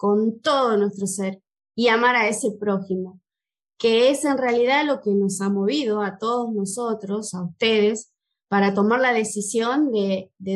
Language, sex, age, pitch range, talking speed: Spanish, female, 20-39, 205-245 Hz, 165 wpm